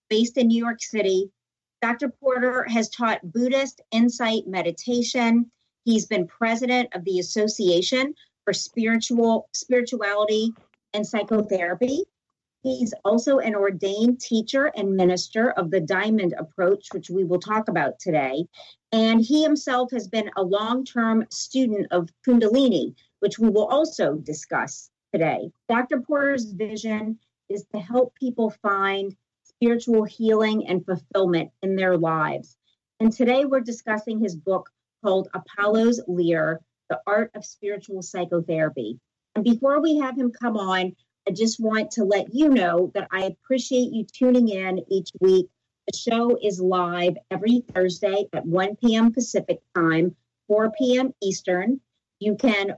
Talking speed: 140 wpm